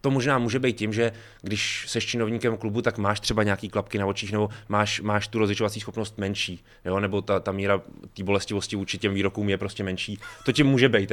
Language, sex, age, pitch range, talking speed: Czech, male, 20-39, 95-115 Hz, 220 wpm